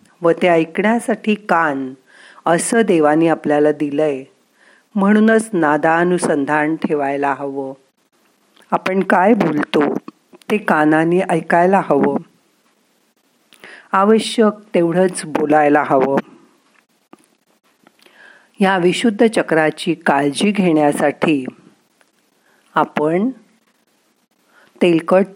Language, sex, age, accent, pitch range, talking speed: Marathi, female, 50-69, native, 150-195 Hz, 75 wpm